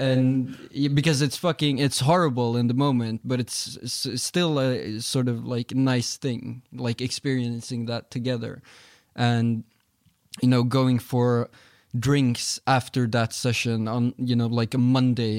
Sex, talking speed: male, 150 wpm